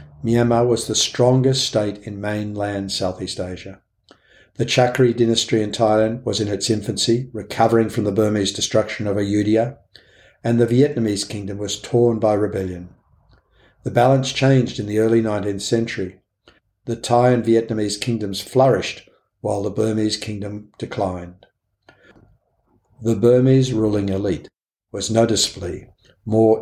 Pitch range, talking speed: 95-115 Hz, 135 wpm